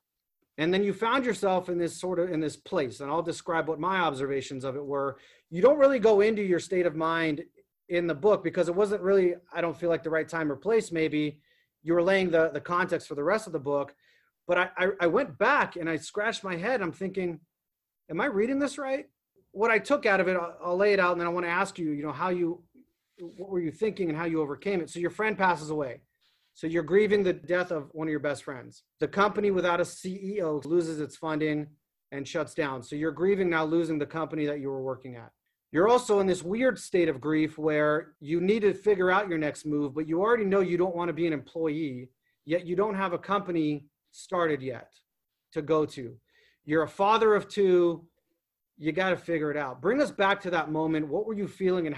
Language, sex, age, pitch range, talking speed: English, male, 30-49, 155-190 Hz, 240 wpm